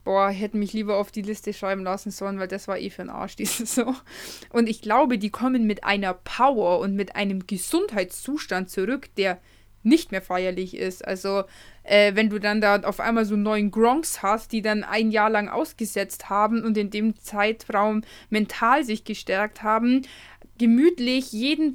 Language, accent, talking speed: German, German, 185 wpm